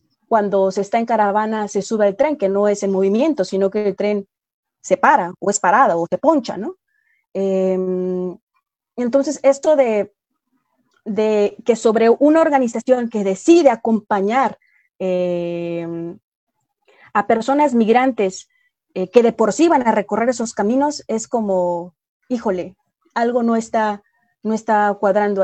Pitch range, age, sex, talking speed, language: 195-260 Hz, 30-49, female, 145 wpm, Spanish